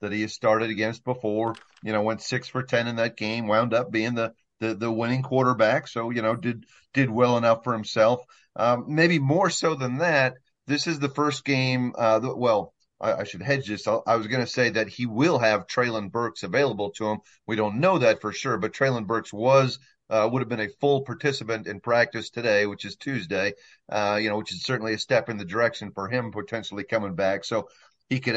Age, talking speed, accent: 40-59, 225 wpm, American